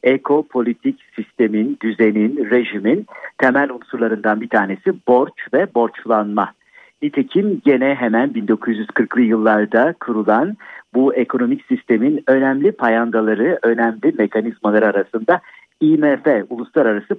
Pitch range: 115-150 Hz